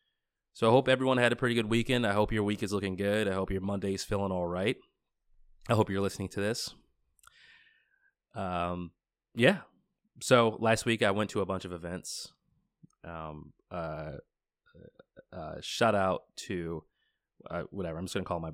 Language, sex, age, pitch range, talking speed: English, male, 20-39, 85-105 Hz, 180 wpm